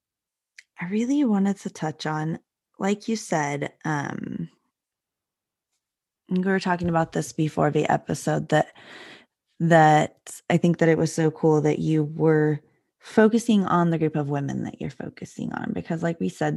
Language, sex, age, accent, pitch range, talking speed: English, female, 20-39, American, 150-190 Hz, 160 wpm